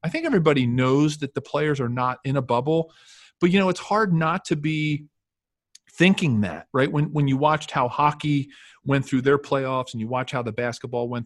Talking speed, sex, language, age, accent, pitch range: 215 wpm, male, English, 40-59, American, 125-170 Hz